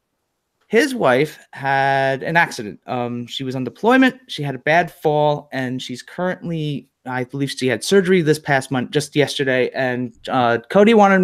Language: English